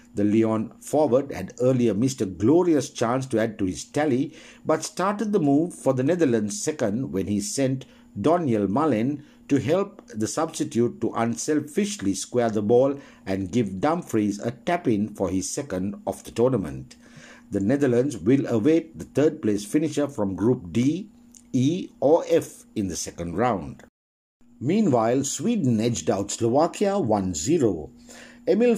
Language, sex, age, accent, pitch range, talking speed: English, male, 60-79, Indian, 105-150 Hz, 150 wpm